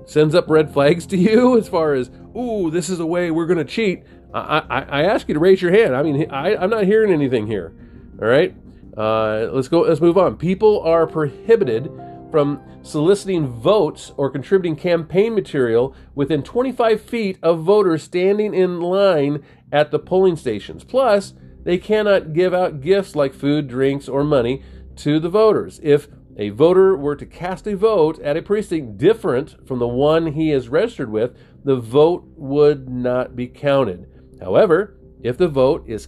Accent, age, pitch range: American, 40-59, 120-175 Hz